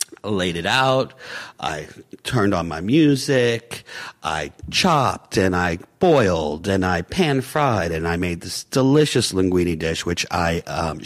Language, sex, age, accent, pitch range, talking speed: English, male, 50-69, American, 90-125 Hz, 145 wpm